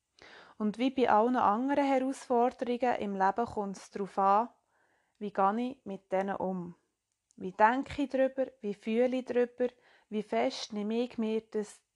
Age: 20-39